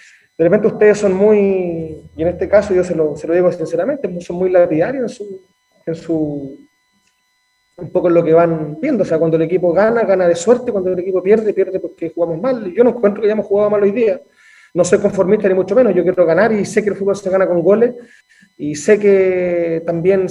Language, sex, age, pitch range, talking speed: Spanish, male, 30-49, 175-210 Hz, 225 wpm